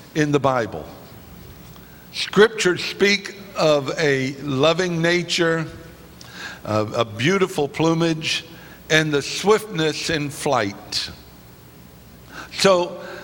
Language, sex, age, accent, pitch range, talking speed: English, male, 60-79, American, 130-170 Hz, 85 wpm